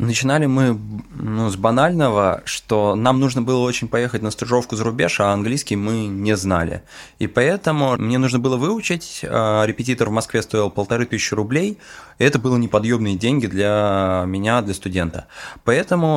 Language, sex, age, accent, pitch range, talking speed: Russian, male, 20-39, native, 100-130 Hz, 155 wpm